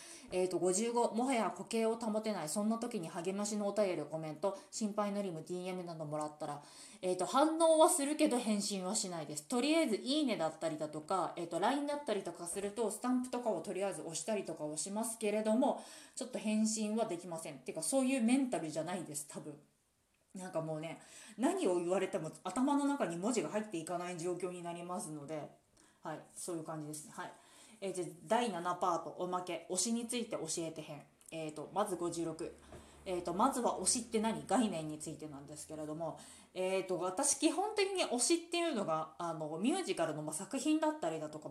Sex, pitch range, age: female, 165-235 Hz, 20-39